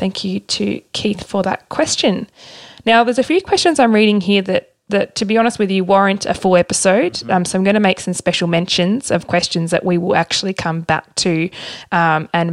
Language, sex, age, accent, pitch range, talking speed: English, female, 20-39, Australian, 170-200 Hz, 220 wpm